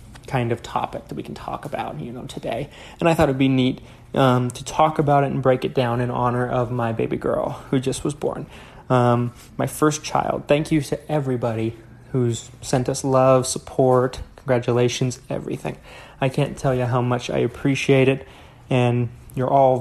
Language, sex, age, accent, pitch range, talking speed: English, male, 20-39, American, 120-140 Hz, 190 wpm